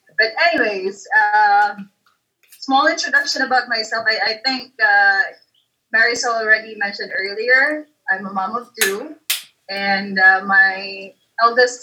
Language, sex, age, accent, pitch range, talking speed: English, female, 20-39, Filipino, 185-230 Hz, 120 wpm